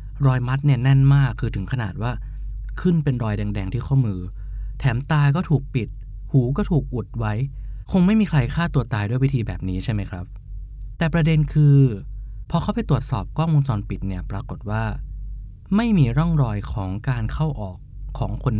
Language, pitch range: Thai, 105-135 Hz